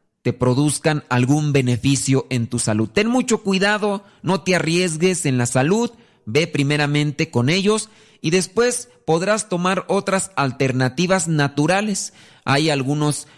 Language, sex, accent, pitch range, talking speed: Spanish, male, Mexican, 125-165 Hz, 130 wpm